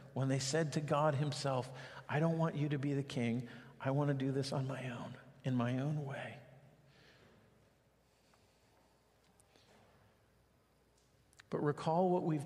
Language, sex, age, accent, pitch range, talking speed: English, male, 50-69, American, 120-145 Hz, 145 wpm